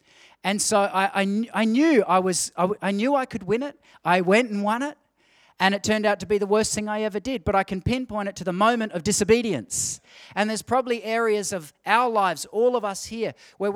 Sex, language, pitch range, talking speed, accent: male, English, 195-240 Hz, 235 wpm, Australian